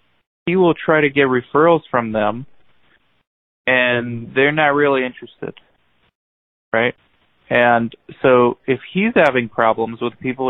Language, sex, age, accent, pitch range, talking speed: English, male, 20-39, American, 110-130 Hz, 125 wpm